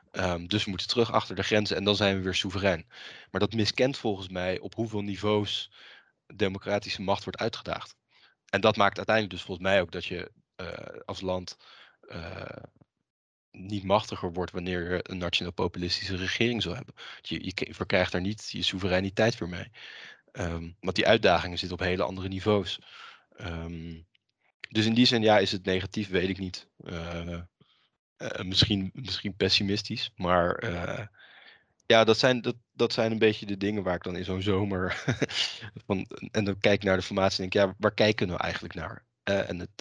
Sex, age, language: male, 20-39, Dutch